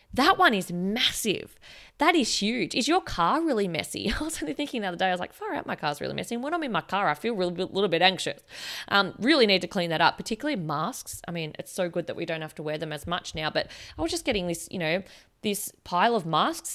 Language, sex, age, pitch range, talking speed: English, female, 20-39, 180-255 Hz, 275 wpm